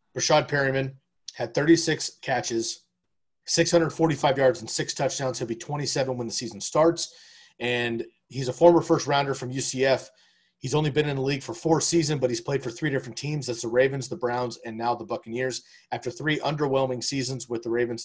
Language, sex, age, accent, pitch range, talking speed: English, male, 30-49, American, 120-145 Hz, 190 wpm